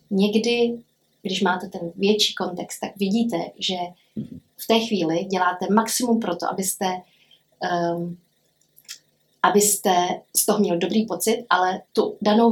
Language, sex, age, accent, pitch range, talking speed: Czech, female, 30-49, native, 180-210 Hz, 125 wpm